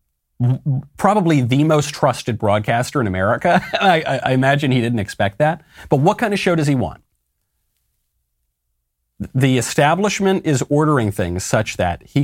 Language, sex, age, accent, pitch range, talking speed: English, male, 40-59, American, 100-150 Hz, 145 wpm